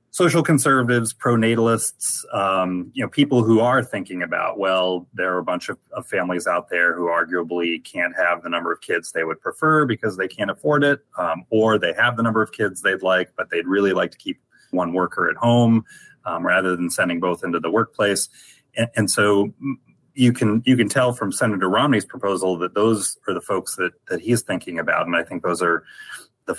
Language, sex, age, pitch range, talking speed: English, male, 30-49, 90-125 Hz, 210 wpm